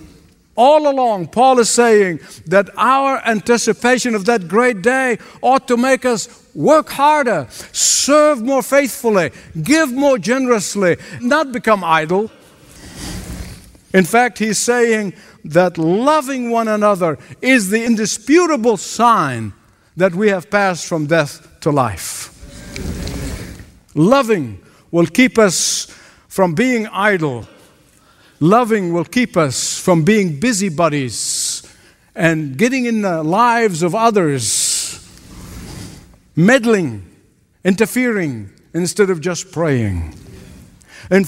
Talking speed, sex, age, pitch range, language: 110 wpm, male, 60-79, 160-235 Hz, English